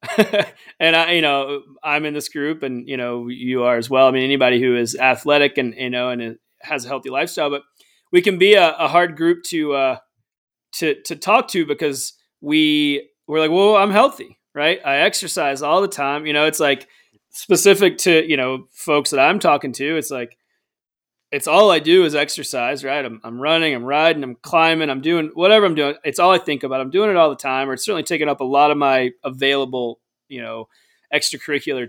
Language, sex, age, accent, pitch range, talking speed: English, male, 20-39, American, 135-175 Hz, 215 wpm